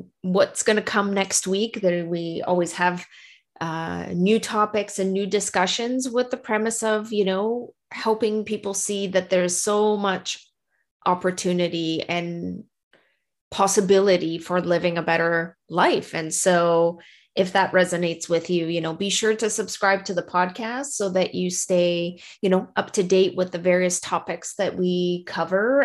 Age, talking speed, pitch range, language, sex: 20-39, 160 wpm, 180-210 Hz, English, female